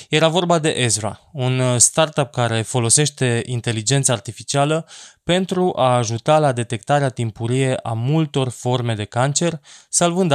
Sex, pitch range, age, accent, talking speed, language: male, 115-145 Hz, 20-39, native, 130 wpm, Romanian